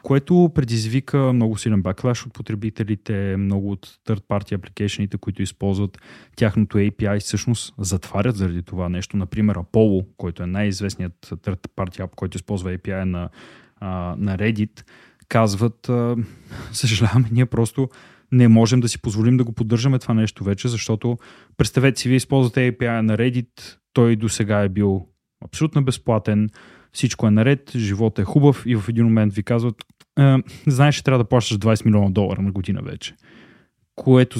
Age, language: 20-39, Bulgarian